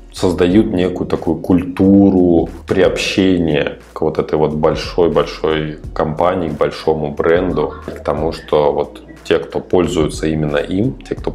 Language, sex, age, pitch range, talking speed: Russian, male, 20-39, 75-95 Hz, 130 wpm